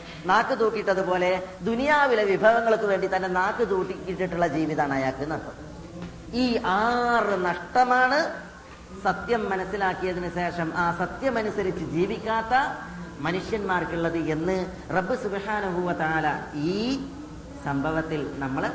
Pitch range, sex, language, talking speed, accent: 170-240 Hz, female, Malayalam, 90 wpm, native